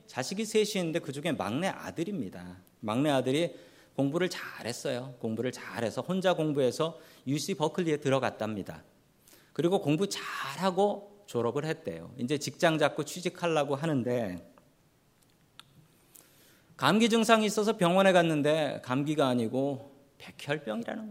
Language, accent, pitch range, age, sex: Korean, native, 130-190 Hz, 40-59, male